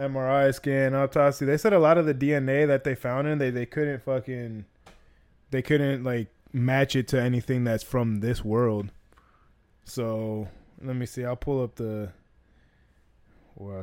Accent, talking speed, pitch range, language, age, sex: American, 165 wpm, 110-140 Hz, English, 20-39, male